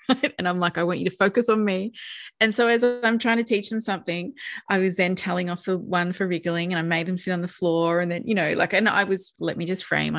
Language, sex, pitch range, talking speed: English, female, 165-205 Hz, 285 wpm